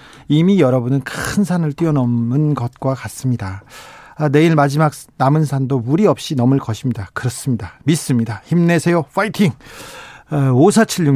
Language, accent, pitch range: Korean, native, 130-175 Hz